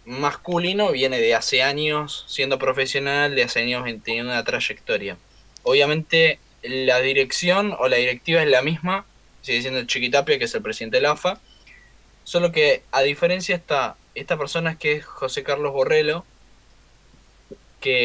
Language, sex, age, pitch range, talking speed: Spanish, male, 20-39, 125-185 Hz, 155 wpm